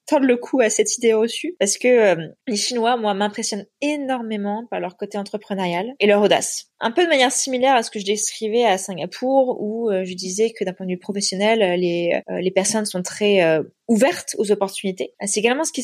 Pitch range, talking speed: 205-260 Hz, 220 wpm